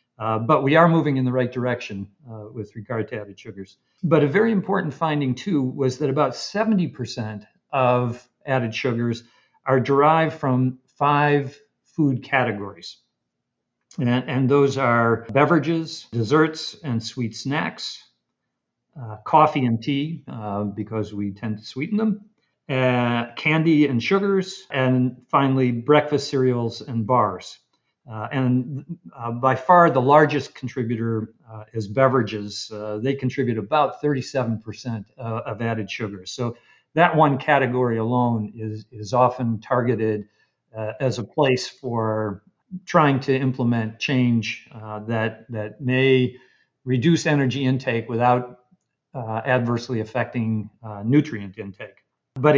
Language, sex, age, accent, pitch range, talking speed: English, male, 50-69, American, 115-145 Hz, 135 wpm